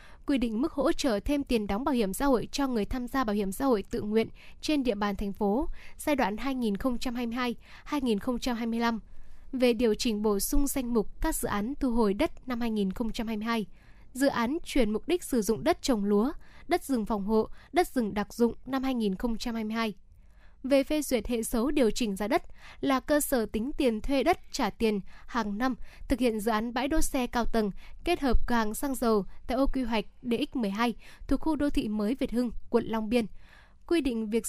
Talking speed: 205 wpm